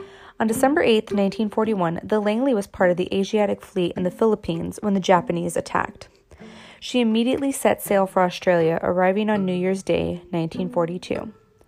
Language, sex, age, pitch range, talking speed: English, female, 20-39, 180-225 Hz, 160 wpm